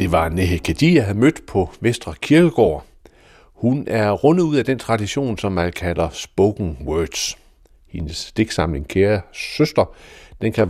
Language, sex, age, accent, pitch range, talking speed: Danish, male, 60-79, native, 85-115 Hz, 155 wpm